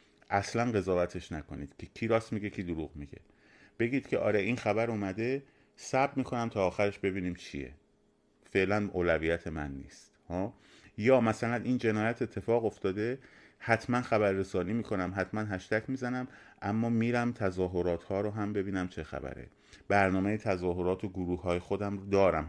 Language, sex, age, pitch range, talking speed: Persian, male, 30-49, 90-110 Hz, 150 wpm